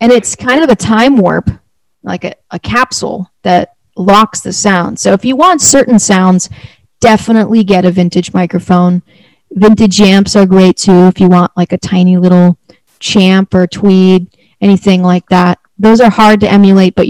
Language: English